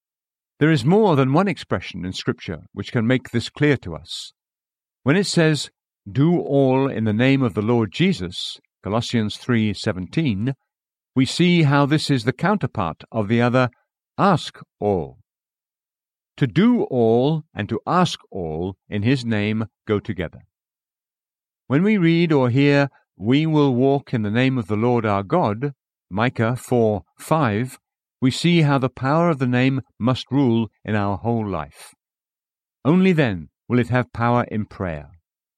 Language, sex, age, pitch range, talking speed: English, male, 50-69, 105-140 Hz, 155 wpm